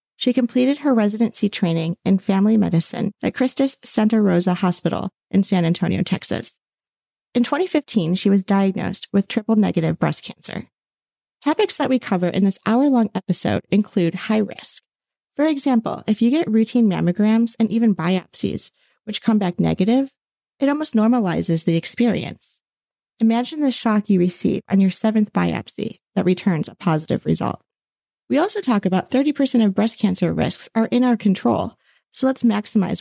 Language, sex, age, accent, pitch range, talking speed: English, female, 30-49, American, 185-230 Hz, 160 wpm